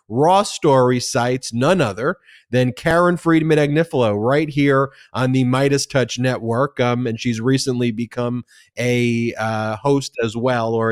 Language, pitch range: English, 120-150 Hz